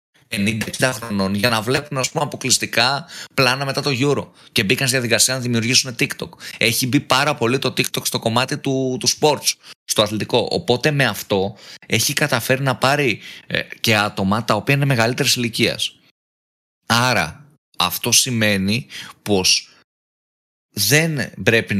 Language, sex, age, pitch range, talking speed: Greek, male, 20-39, 100-130 Hz, 145 wpm